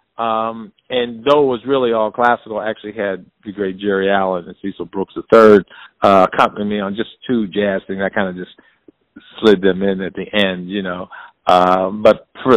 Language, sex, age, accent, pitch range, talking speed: English, male, 50-69, American, 90-105 Hz, 190 wpm